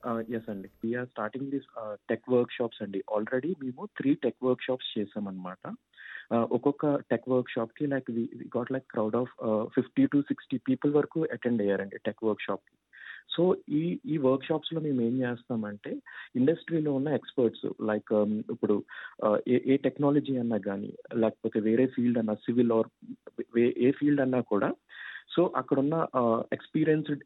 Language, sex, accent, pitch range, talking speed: Telugu, male, native, 120-150 Hz, 155 wpm